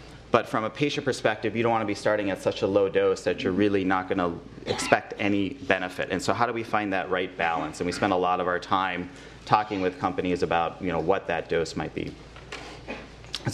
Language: English